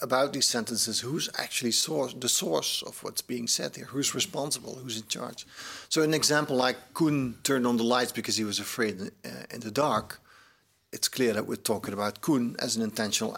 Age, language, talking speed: 40-59, English, 195 wpm